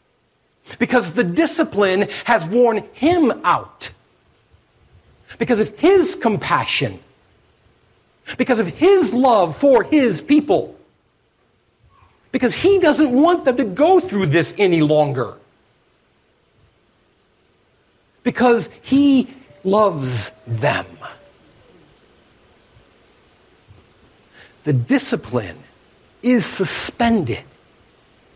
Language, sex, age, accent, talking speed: English, male, 60-79, American, 80 wpm